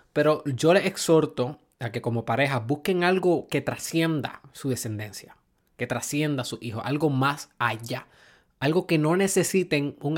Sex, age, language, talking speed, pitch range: male, 20-39, Spanish, 160 wpm, 120-150 Hz